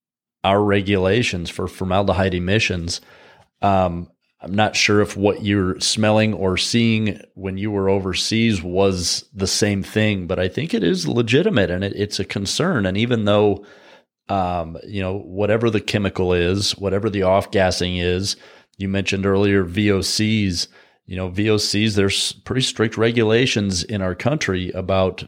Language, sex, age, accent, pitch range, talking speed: English, male, 30-49, American, 95-105 Hz, 145 wpm